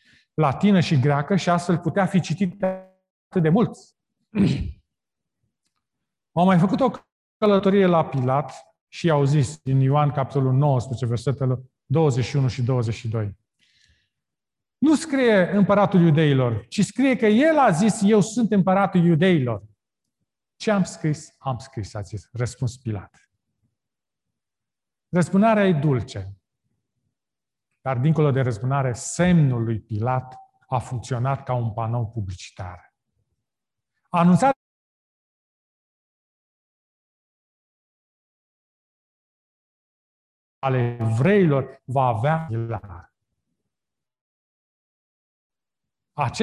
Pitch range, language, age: 120-185 Hz, Romanian, 40-59